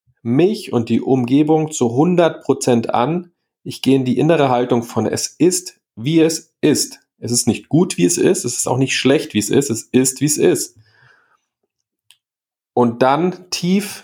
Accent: German